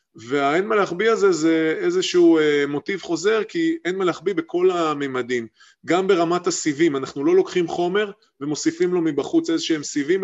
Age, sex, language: 20-39, male, Hebrew